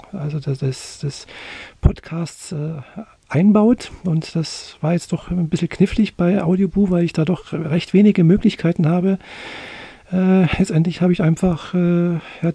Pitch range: 160-195 Hz